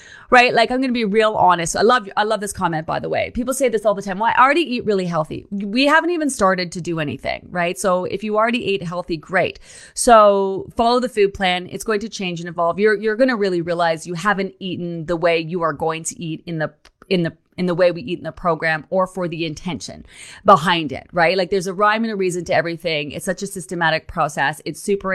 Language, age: English, 30-49